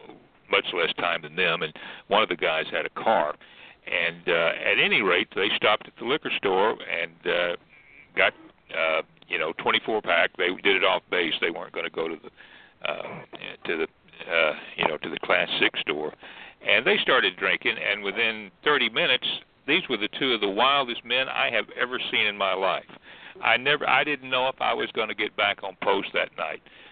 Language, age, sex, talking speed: English, 60-79, male, 210 wpm